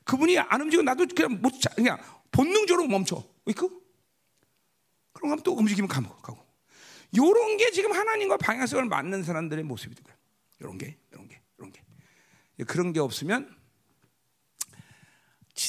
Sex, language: male, Korean